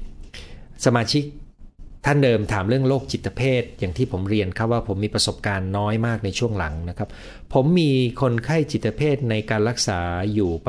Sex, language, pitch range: male, Thai, 90-130 Hz